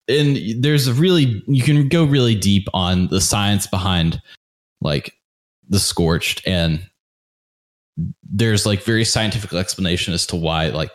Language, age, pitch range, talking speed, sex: English, 20-39, 90-115 Hz, 140 wpm, male